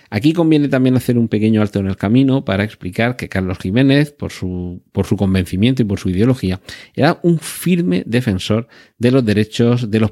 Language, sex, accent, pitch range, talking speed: Spanish, male, Spanish, 95-120 Hz, 195 wpm